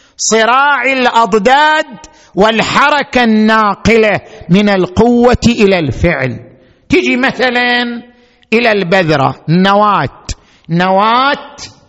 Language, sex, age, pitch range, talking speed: Arabic, male, 50-69, 165-245 Hz, 70 wpm